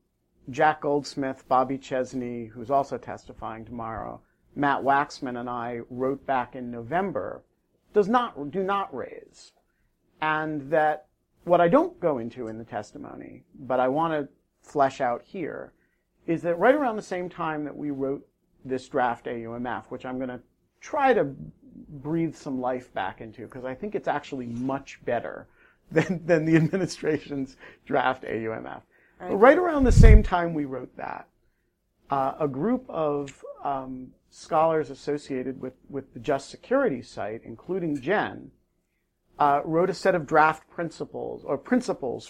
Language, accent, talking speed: English, American, 150 wpm